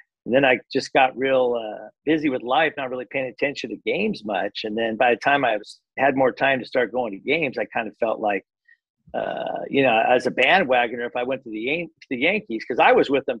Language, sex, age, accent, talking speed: English, male, 50-69, American, 250 wpm